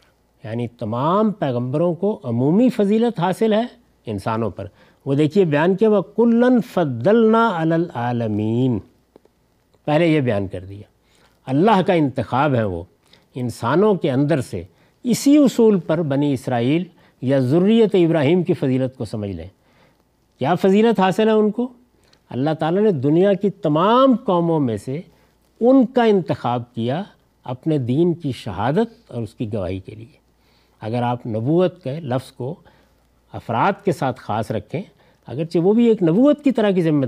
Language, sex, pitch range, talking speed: Urdu, male, 125-205 Hz, 150 wpm